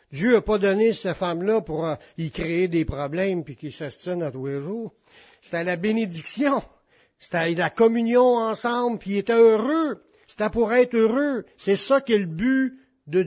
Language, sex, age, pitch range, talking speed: French, male, 60-79, 155-200 Hz, 180 wpm